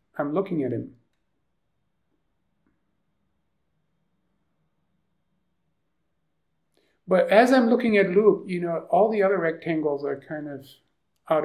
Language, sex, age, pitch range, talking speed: English, male, 50-69, 135-185 Hz, 105 wpm